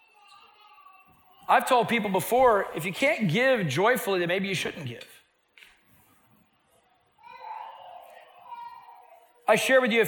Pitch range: 165-220 Hz